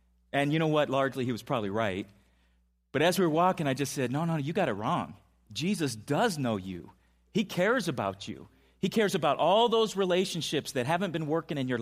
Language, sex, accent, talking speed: English, male, American, 220 wpm